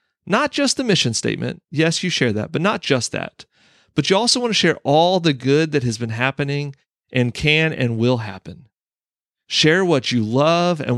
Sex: male